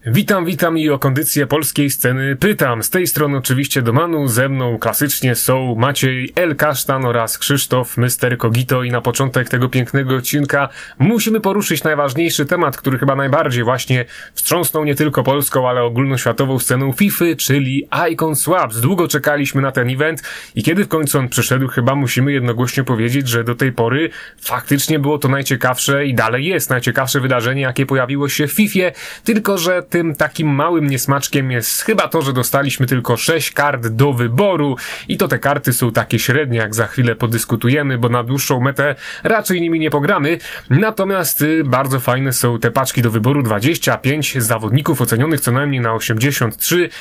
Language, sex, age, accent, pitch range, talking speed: Polish, male, 30-49, native, 125-150 Hz, 170 wpm